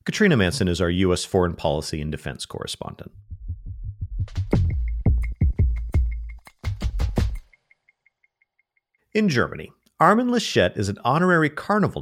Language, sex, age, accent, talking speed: English, male, 40-59, American, 90 wpm